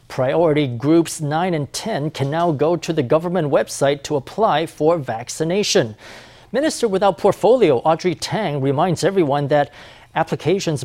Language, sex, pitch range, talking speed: English, male, 145-185 Hz, 140 wpm